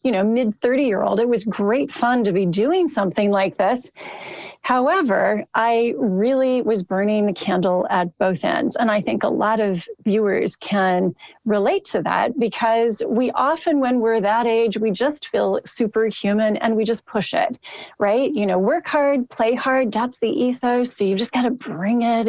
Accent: American